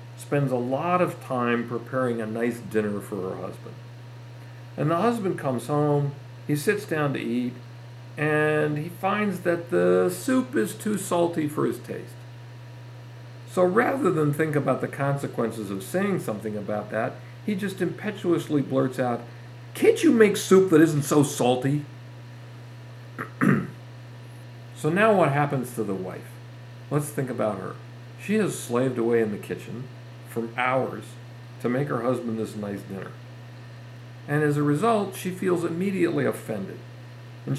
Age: 50-69